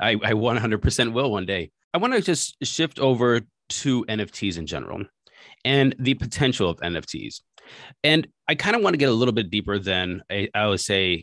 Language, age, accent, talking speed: English, 30-49, American, 190 wpm